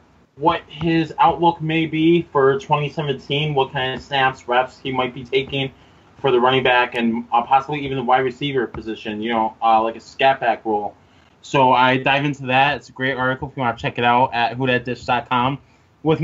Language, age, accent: English, 20-39, American